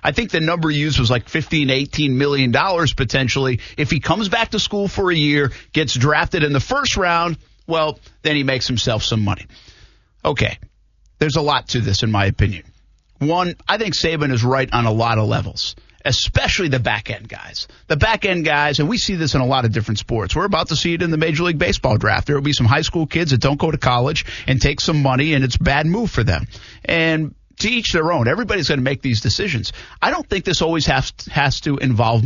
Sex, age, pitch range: male, 50-69, 115-160 Hz